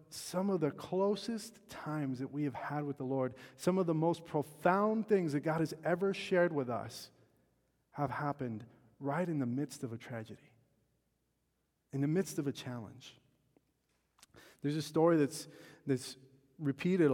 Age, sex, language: 30-49, male, English